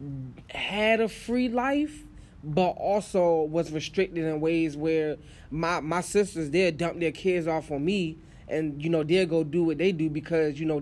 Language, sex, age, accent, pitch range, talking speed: English, male, 20-39, American, 155-175 Hz, 185 wpm